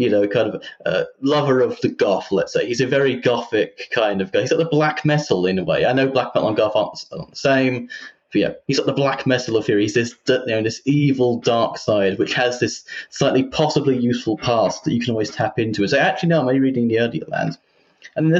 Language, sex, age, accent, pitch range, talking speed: English, male, 30-49, British, 115-140 Hz, 260 wpm